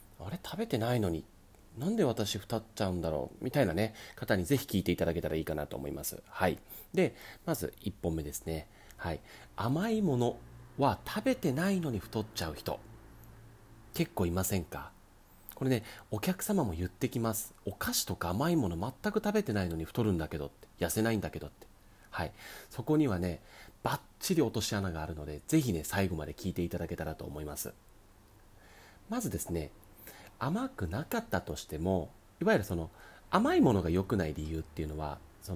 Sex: male